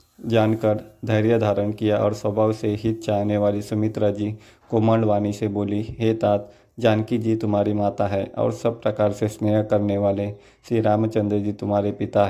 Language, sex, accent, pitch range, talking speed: Hindi, male, native, 105-115 Hz, 165 wpm